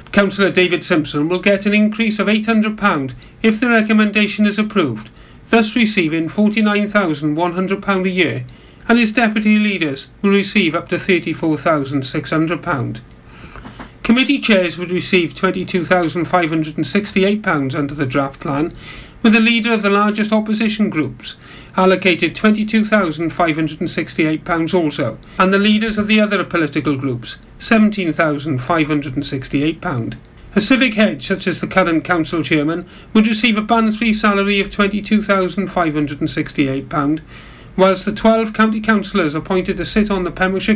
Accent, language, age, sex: British, English, 40-59, male